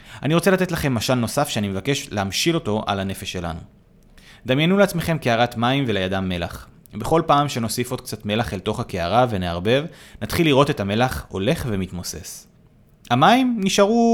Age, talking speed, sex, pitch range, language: 30-49, 155 wpm, male, 100-145 Hz, Hebrew